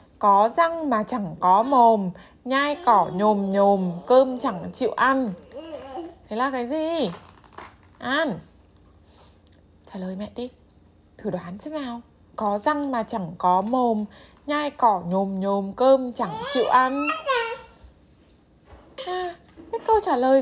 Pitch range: 185-265 Hz